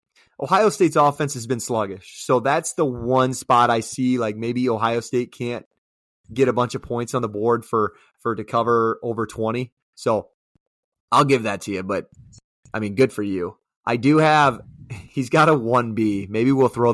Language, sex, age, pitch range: English, male, 30-49, 110-130 Hz